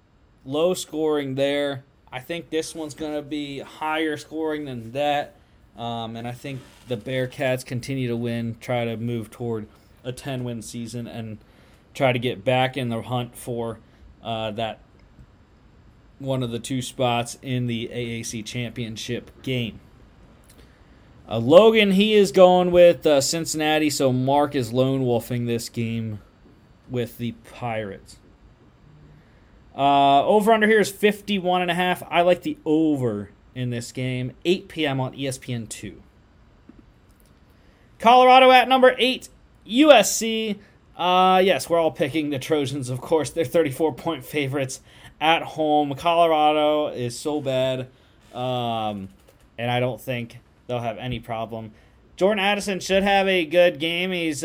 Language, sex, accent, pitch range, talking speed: English, male, American, 120-155 Hz, 135 wpm